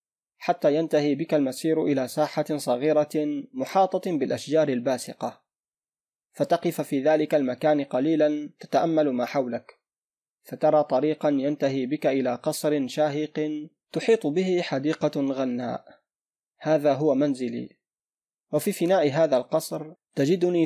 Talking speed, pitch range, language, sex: 105 wpm, 135-160 Hz, Arabic, male